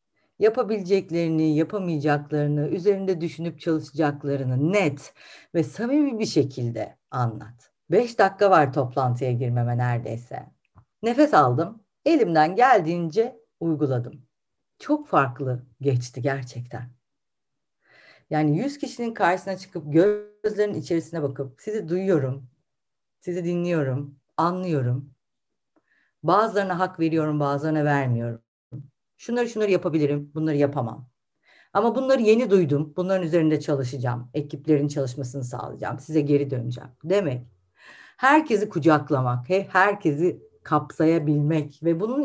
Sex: female